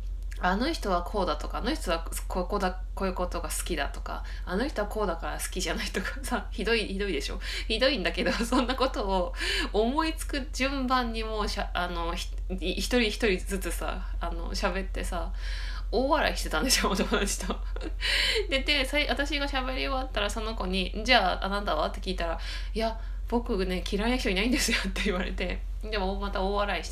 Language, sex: Japanese, female